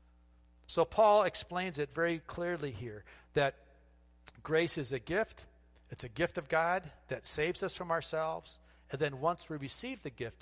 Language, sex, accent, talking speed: English, male, American, 165 wpm